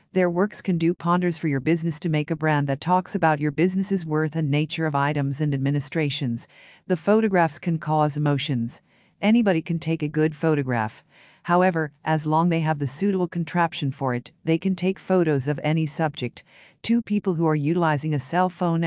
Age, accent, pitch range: 50-69, American, 145-180 Hz